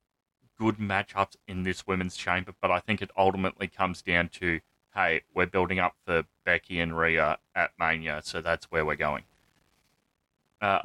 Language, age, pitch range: English, 20-39, 90-110 Hz